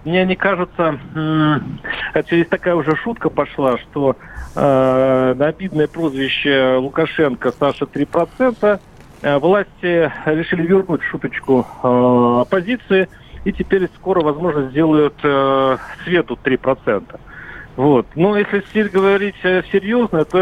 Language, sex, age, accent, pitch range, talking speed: Russian, male, 40-59, native, 135-180 Hz, 110 wpm